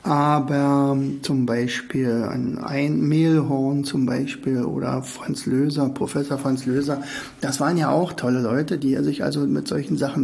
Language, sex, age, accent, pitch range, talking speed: German, male, 60-79, German, 140-180 Hz, 150 wpm